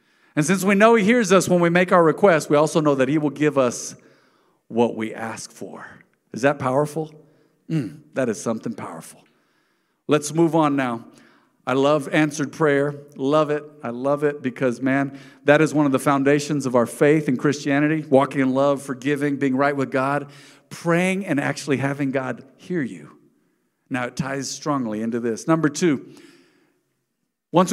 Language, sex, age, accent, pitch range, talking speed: English, male, 50-69, American, 135-155 Hz, 175 wpm